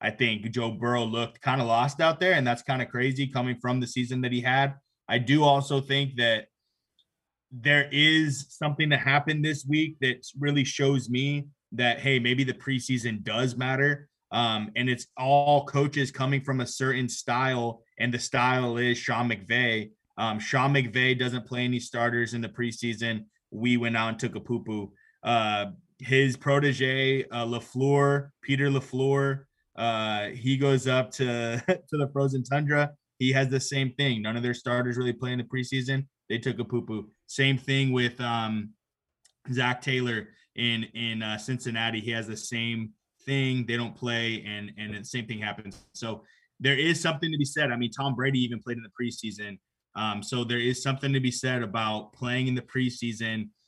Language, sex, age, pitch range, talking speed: English, male, 20-39, 115-135 Hz, 185 wpm